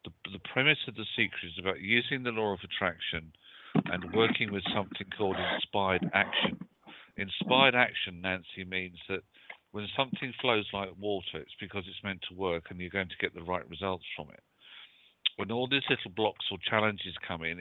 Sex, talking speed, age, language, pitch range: male, 185 wpm, 50-69, English, 85-105 Hz